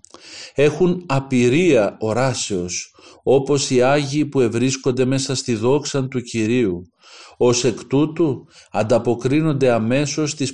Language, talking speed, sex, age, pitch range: Greek, 110 wpm, male, 50-69, 110-145 Hz